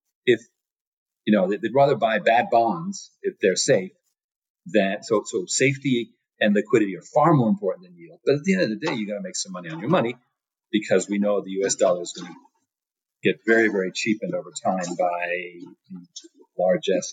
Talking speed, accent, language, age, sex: 200 wpm, American, English, 40-59, male